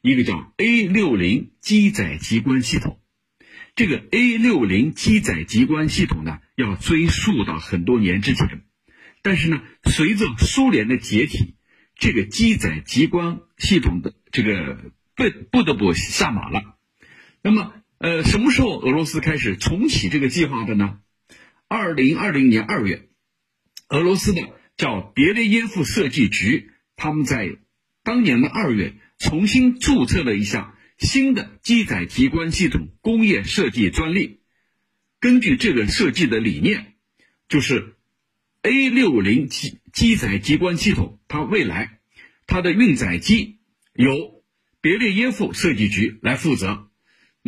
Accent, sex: native, male